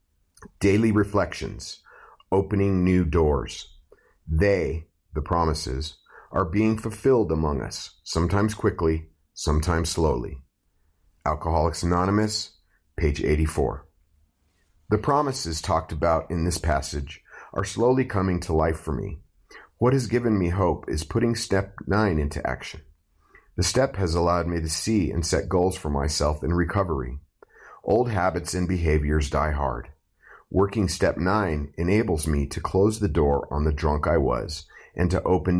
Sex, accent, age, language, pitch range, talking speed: male, American, 40-59, English, 75-95 Hz, 140 wpm